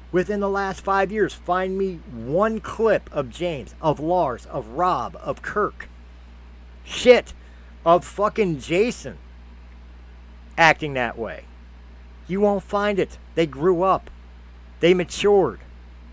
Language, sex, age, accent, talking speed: English, male, 50-69, American, 125 wpm